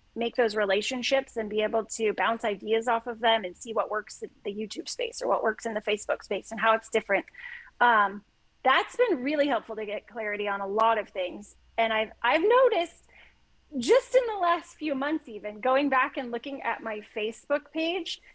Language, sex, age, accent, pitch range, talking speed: English, female, 30-49, American, 225-305 Hz, 205 wpm